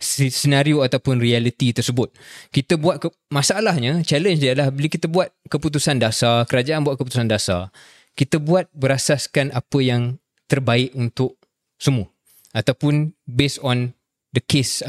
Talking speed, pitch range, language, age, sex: 135 wpm, 125-170 Hz, Malay, 20-39, male